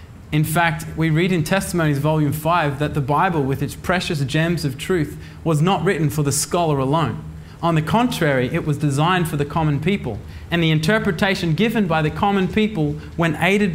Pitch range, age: 130-175 Hz, 20-39